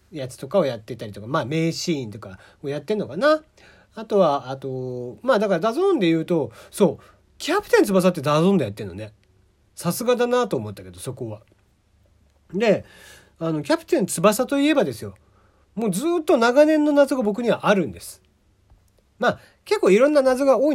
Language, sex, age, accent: Japanese, male, 40-59, native